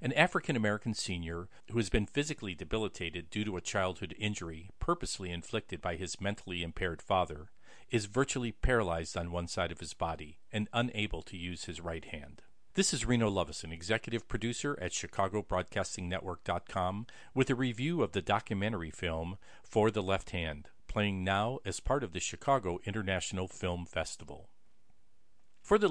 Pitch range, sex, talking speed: 90-115 Hz, male, 160 wpm